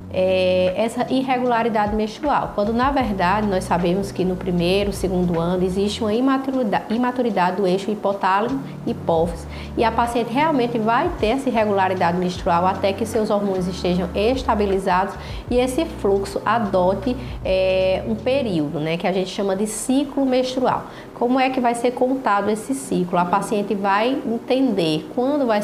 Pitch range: 190-240 Hz